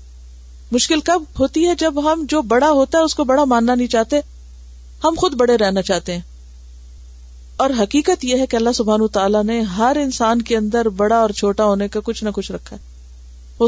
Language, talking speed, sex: Urdu, 200 wpm, female